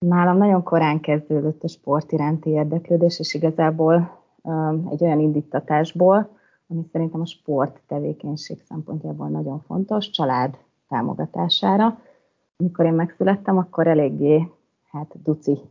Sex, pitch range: female, 145-170 Hz